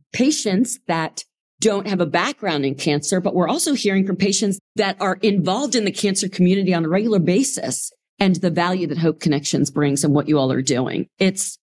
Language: English